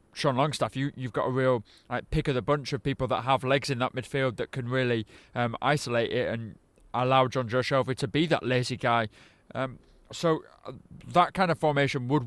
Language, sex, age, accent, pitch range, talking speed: English, male, 20-39, British, 125-150 Hz, 205 wpm